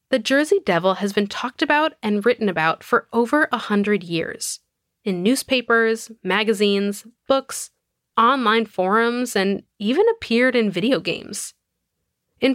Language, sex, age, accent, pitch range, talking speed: English, female, 10-29, American, 205-265 Hz, 135 wpm